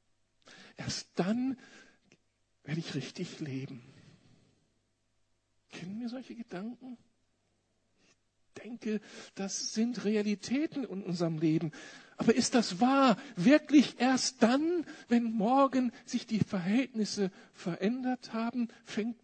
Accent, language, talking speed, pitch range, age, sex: German, German, 105 wpm, 155-240 Hz, 60-79, male